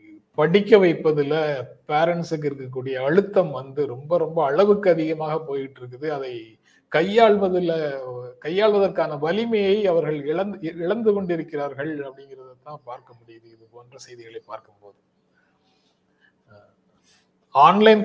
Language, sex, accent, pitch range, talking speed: Tamil, male, native, 135-170 Hz, 95 wpm